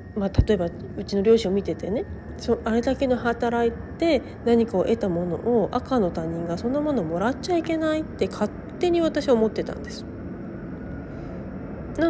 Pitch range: 180-245 Hz